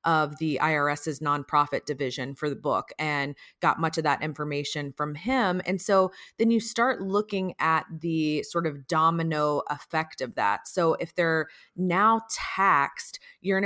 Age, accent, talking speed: 30-49, American, 165 wpm